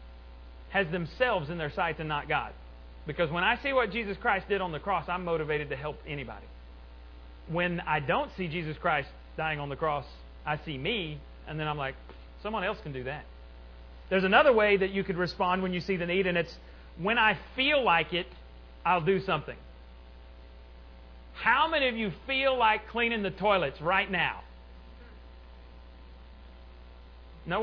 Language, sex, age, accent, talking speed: English, male, 40-59, American, 175 wpm